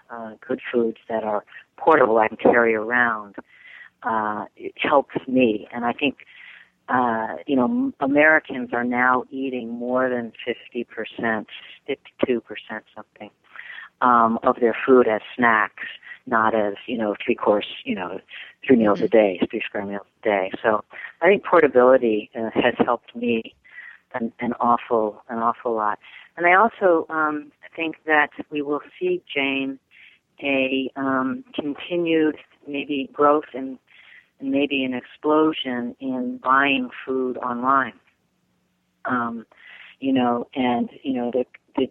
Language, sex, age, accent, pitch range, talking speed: English, female, 40-59, American, 115-135 Hz, 145 wpm